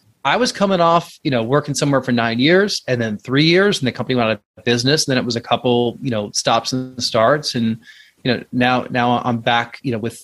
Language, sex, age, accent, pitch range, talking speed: English, male, 30-49, American, 115-140 Hz, 250 wpm